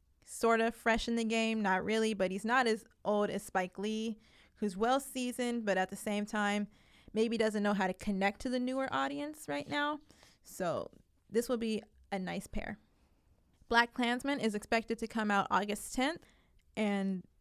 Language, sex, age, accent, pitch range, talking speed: English, female, 20-39, American, 200-255 Hz, 180 wpm